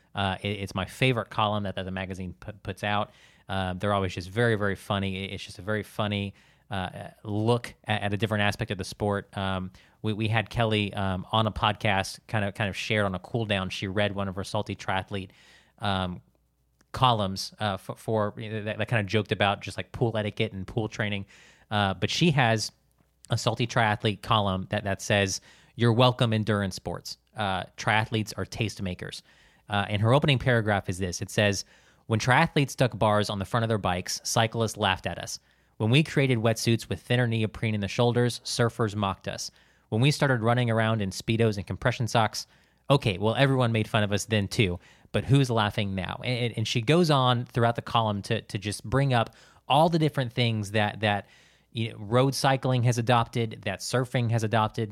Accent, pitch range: American, 100-120 Hz